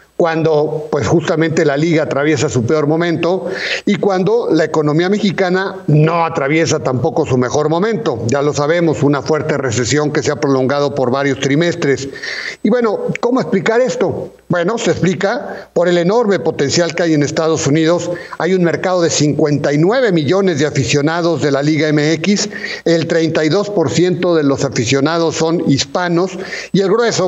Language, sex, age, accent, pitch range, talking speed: Spanish, male, 50-69, Mexican, 150-180 Hz, 160 wpm